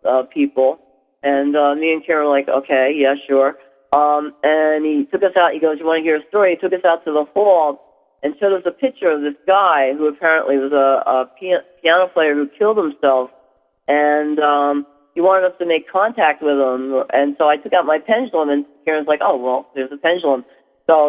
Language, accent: English, American